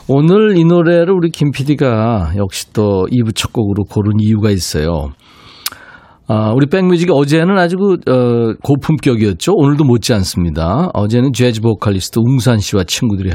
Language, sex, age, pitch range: Korean, male, 40-59, 100-140 Hz